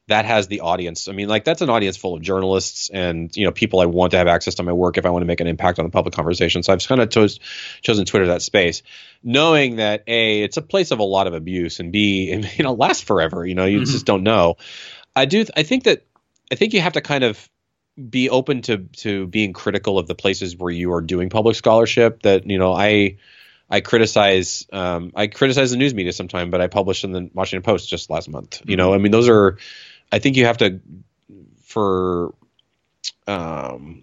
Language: English